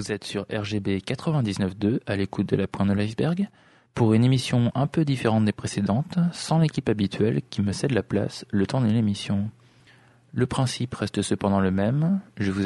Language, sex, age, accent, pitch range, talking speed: English, male, 20-39, French, 95-125 Hz, 185 wpm